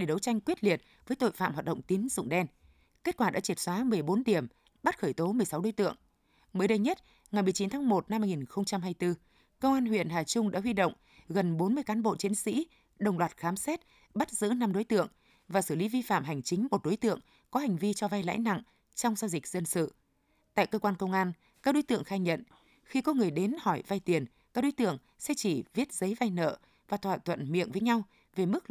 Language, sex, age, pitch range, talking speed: Vietnamese, female, 20-39, 180-230 Hz, 235 wpm